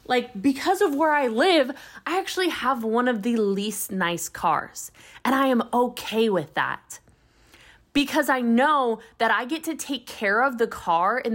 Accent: American